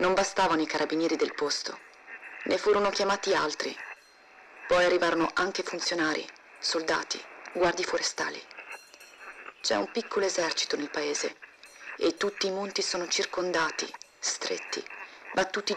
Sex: female